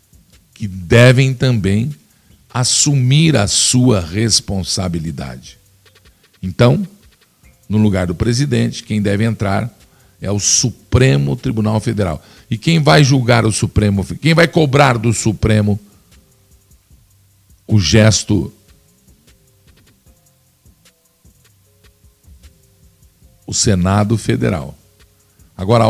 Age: 50-69